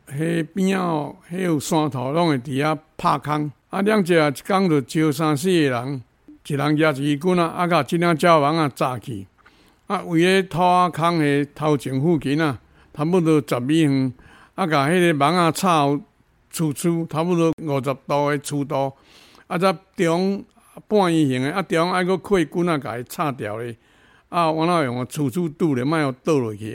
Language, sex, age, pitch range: Chinese, male, 60-79, 140-175 Hz